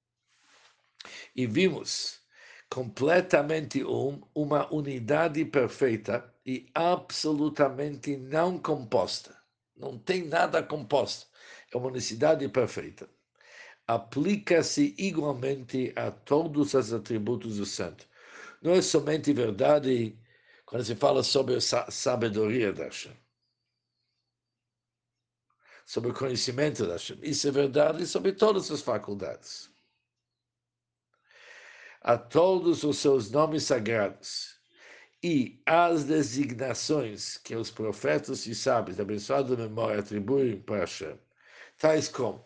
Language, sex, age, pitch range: Portuguese, male, 60-79, 120-155 Hz